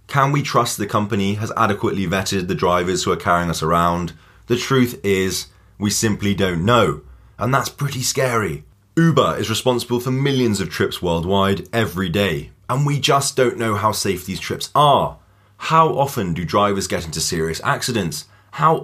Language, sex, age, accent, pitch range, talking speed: English, male, 20-39, British, 95-125 Hz, 175 wpm